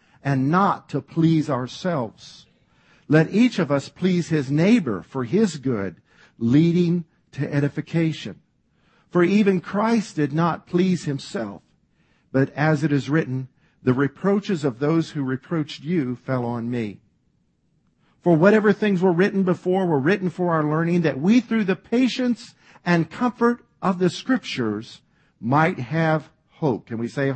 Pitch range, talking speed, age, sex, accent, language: 130-175 Hz, 145 wpm, 50-69, male, American, English